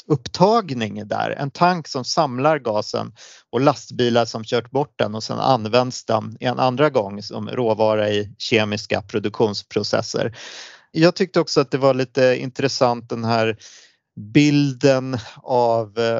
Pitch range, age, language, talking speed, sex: 115-135 Hz, 30-49, Swedish, 135 wpm, male